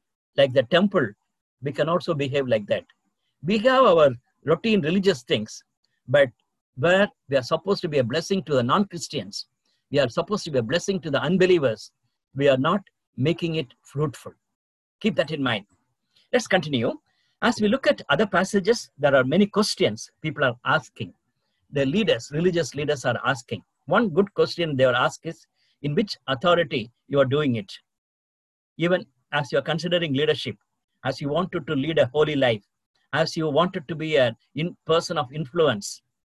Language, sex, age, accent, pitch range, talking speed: English, male, 50-69, Indian, 135-190 Hz, 175 wpm